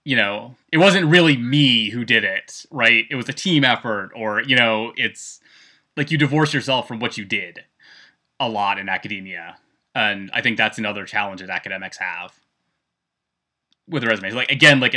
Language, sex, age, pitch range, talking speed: English, male, 20-39, 105-135 Hz, 180 wpm